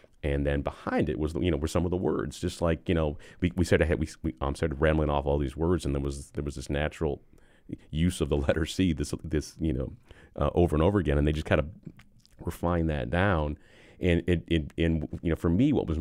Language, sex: English, male